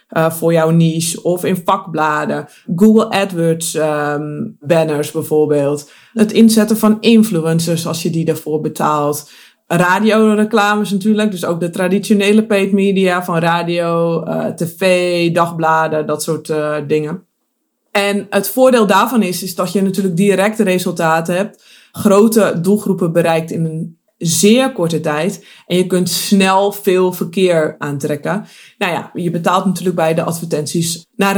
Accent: Dutch